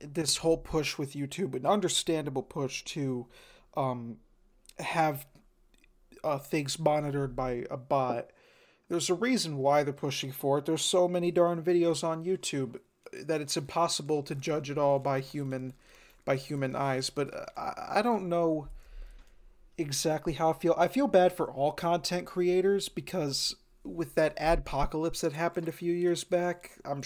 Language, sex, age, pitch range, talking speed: English, male, 40-59, 135-170 Hz, 155 wpm